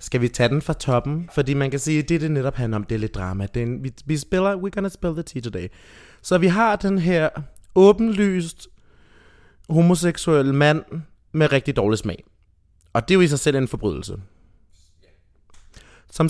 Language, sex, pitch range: Danish, male, 100-150 Hz